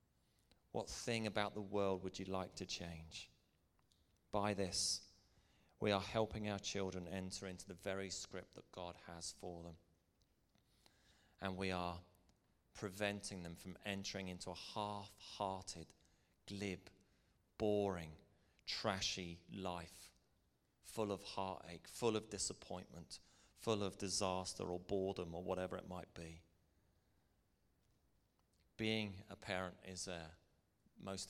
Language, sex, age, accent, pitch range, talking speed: English, male, 30-49, British, 85-95 Hz, 120 wpm